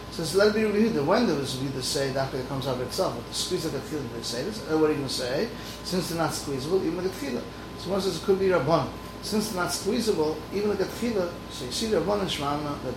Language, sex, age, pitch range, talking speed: English, male, 30-49, 140-180 Hz, 285 wpm